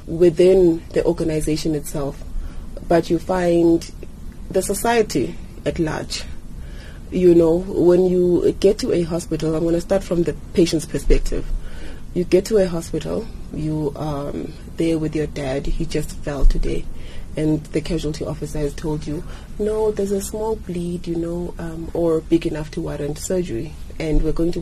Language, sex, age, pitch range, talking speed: English, female, 30-49, 150-190 Hz, 165 wpm